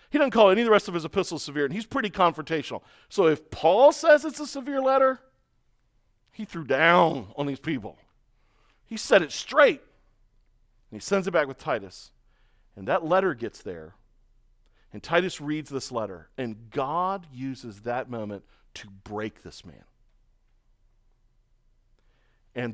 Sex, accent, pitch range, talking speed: male, American, 120-190 Hz, 160 wpm